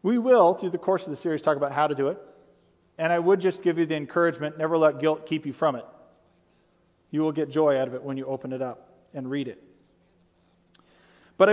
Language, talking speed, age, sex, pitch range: English, 235 wpm, 40-59, male, 155-210 Hz